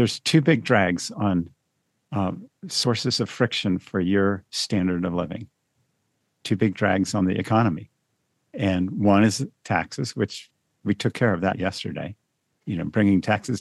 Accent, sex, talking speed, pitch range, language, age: American, male, 155 wpm, 95-120 Hz, English, 50-69